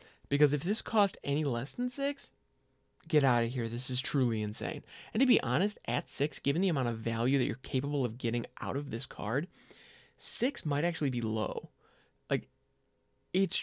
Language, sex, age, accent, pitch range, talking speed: English, male, 20-39, American, 120-150 Hz, 190 wpm